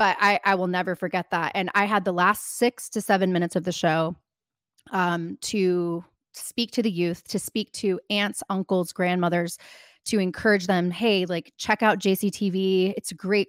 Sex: female